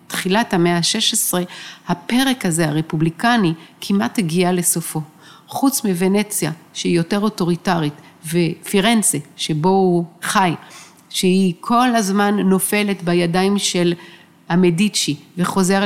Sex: female